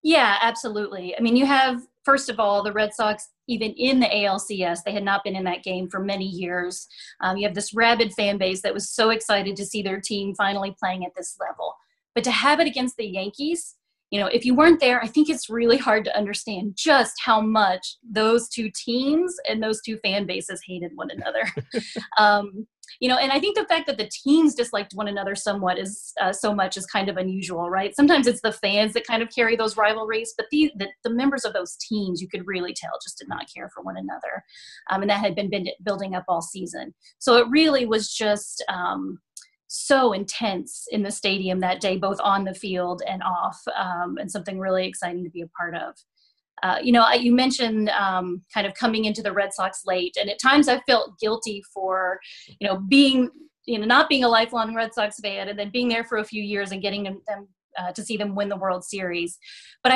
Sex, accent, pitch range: female, American, 195-235 Hz